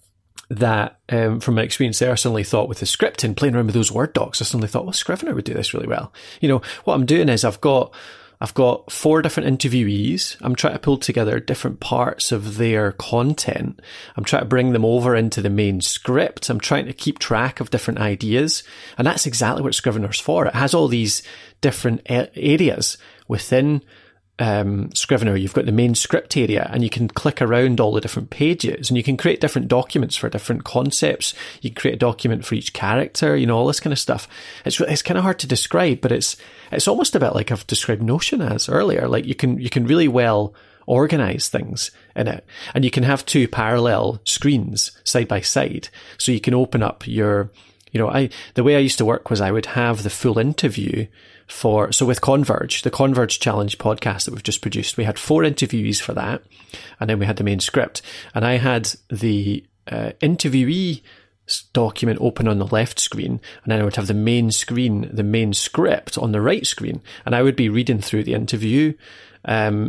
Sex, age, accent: male, 30-49, British